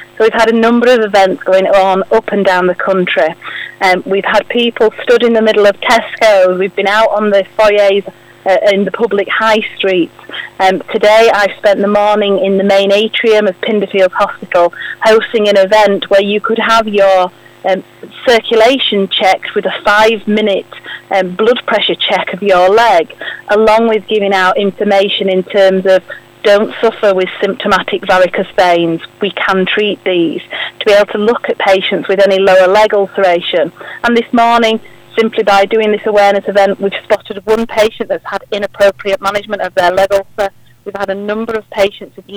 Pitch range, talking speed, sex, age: 190-215 Hz, 180 wpm, female, 30-49